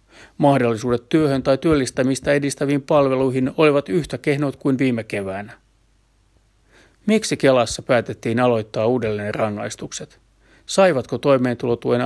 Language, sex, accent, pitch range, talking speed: Finnish, male, native, 110-140 Hz, 100 wpm